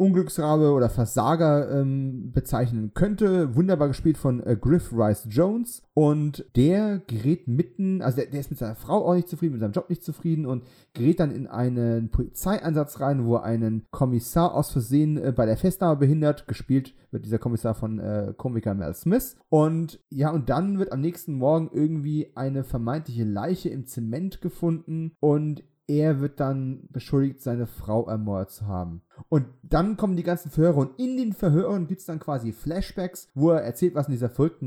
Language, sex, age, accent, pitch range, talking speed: German, male, 30-49, German, 120-160 Hz, 185 wpm